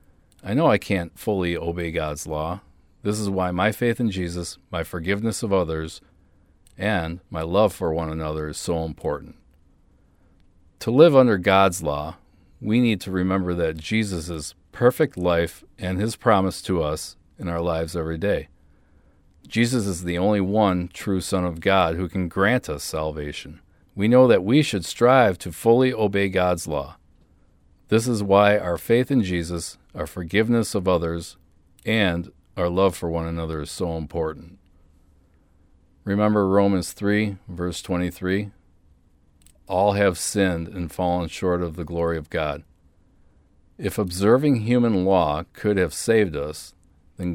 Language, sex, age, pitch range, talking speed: English, male, 40-59, 80-100 Hz, 155 wpm